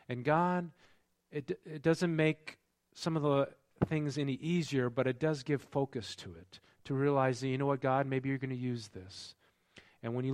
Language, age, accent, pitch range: English, 40-59, American, 105-140 Hz